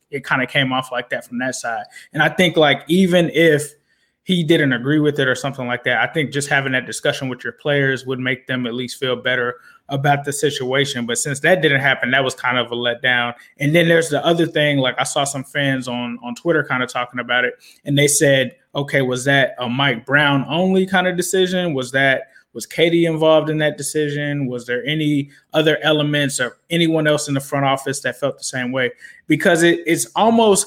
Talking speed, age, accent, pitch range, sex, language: 225 wpm, 20-39, American, 130-155 Hz, male, English